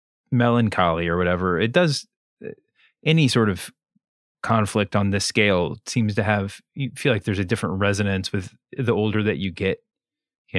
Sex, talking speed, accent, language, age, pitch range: male, 165 wpm, American, English, 30-49, 100-120 Hz